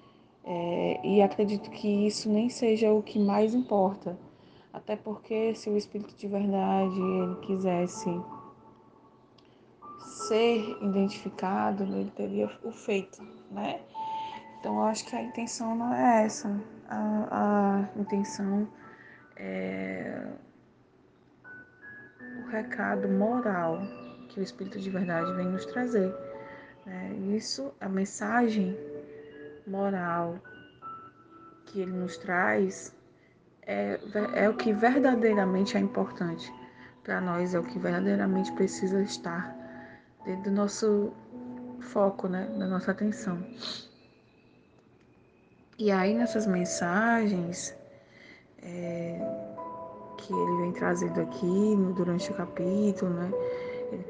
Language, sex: Portuguese, female